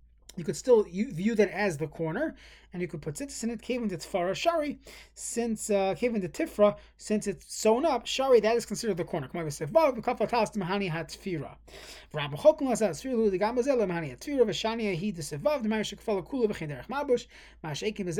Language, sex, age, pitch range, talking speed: English, male, 30-49, 160-220 Hz, 90 wpm